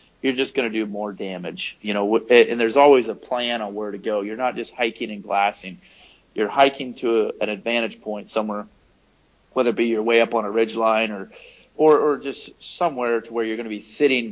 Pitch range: 105-115 Hz